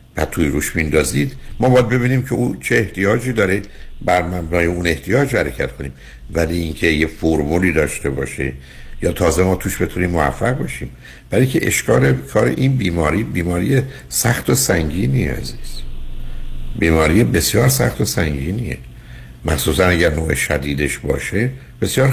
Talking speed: 145 wpm